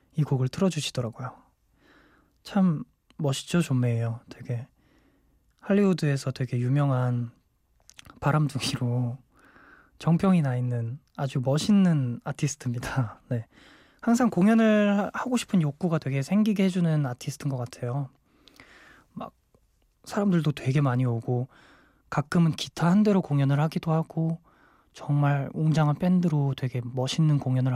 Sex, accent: male, native